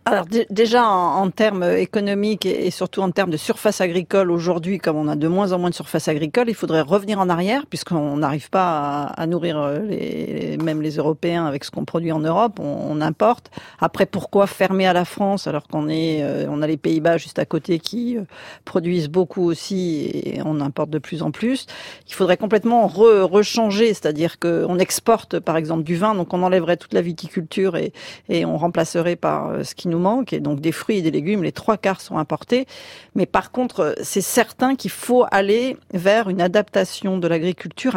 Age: 40-59